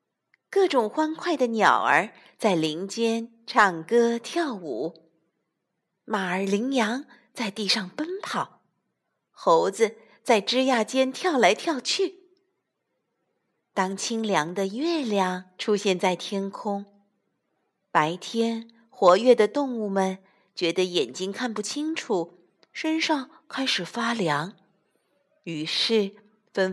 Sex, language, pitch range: female, Chinese, 185-280 Hz